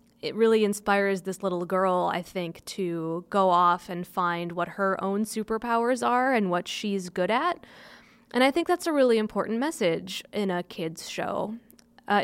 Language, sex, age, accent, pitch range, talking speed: English, female, 20-39, American, 185-230 Hz, 175 wpm